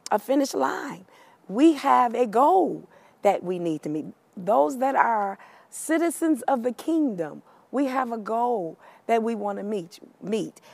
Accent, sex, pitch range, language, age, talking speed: American, female, 175-245 Hz, English, 50-69, 160 wpm